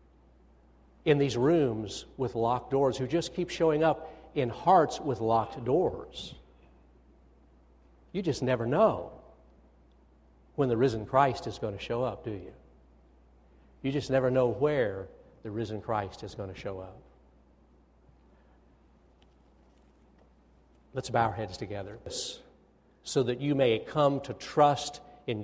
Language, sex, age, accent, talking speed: English, male, 60-79, American, 135 wpm